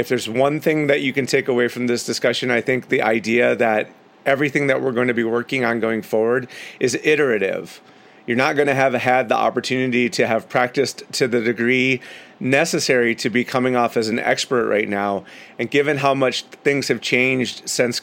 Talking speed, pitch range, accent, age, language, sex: 205 wpm, 120-145 Hz, American, 30-49, English, male